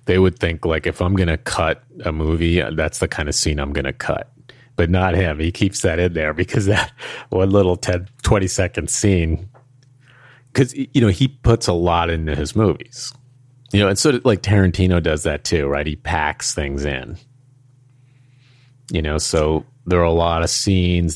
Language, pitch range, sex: English, 80-115 Hz, male